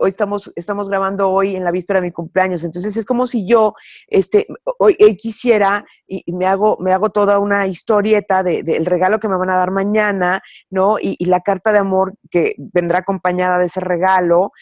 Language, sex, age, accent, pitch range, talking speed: Spanish, female, 40-59, Mexican, 180-205 Hz, 215 wpm